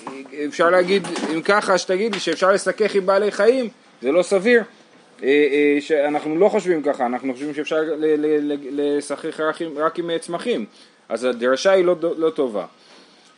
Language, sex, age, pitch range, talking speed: Hebrew, male, 30-49, 150-195 Hz, 150 wpm